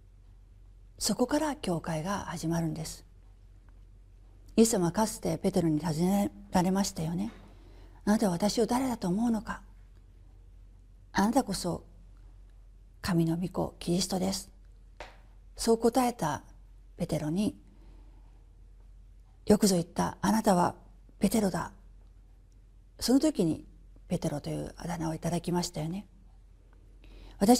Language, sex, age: Japanese, female, 40-59